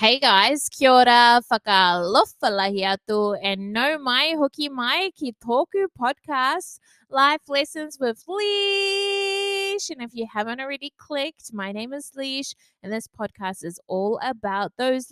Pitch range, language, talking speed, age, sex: 205-275 Hz, English, 135 wpm, 20-39, female